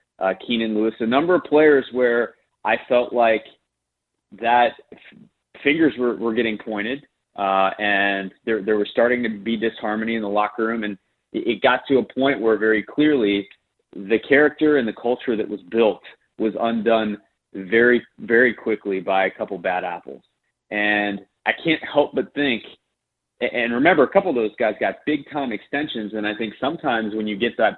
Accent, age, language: American, 30-49, English